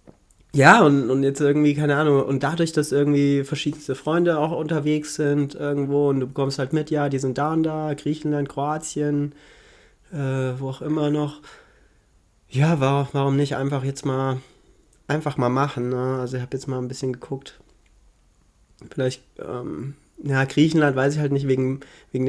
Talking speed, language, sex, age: 170 wpm, German, male, 30-49